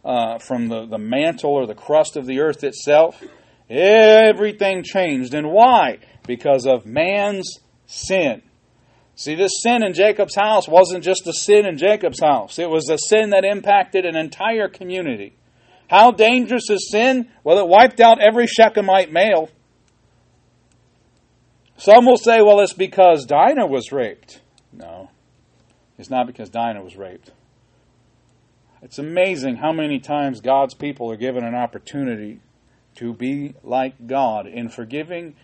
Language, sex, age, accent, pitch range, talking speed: English, male, 40-59, American, 130-200 Hz, 145 wpm